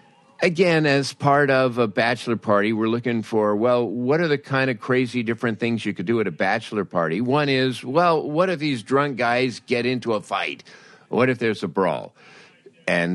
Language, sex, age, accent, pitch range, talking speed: English, male, 50-69, American, 95-125 Hz, 200 wpm